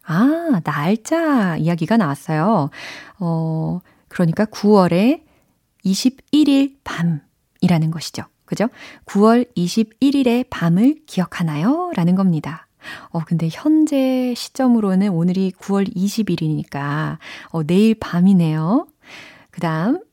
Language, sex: Korean, female